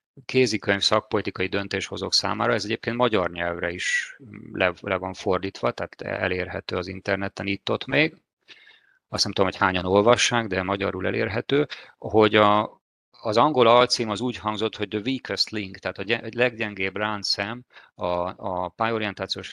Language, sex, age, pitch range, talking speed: Hungarian, male, 30-49, 95-110 Hz, 150 wpm